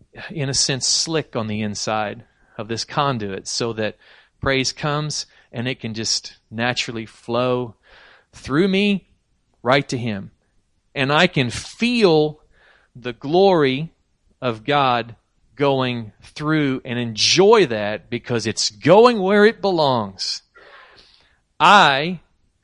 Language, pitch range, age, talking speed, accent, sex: English, 110-145 Hz, 40-59, 120 wpm, American, male